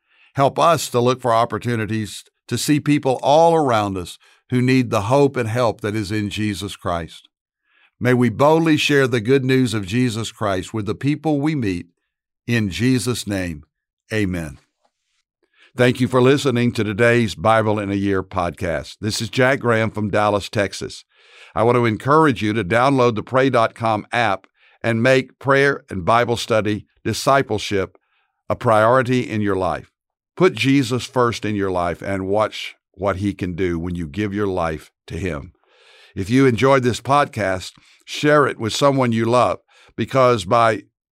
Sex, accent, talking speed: male, American, 165 wpm